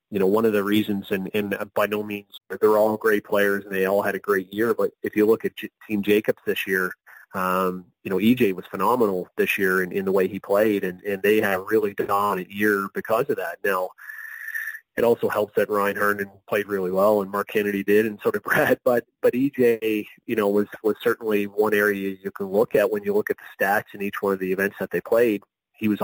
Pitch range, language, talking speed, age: 95-110 Hz, English, 245 wpm, 30-49